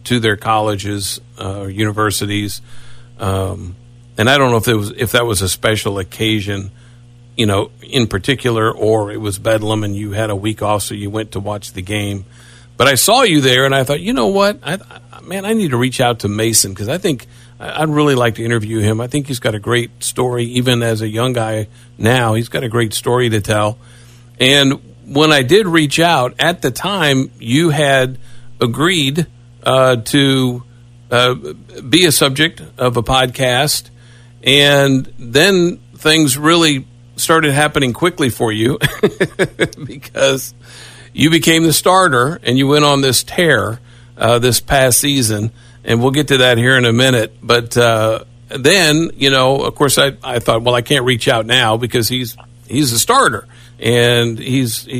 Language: English